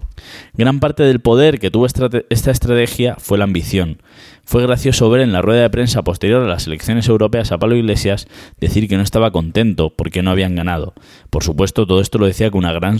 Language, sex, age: Spanish, male, 20-39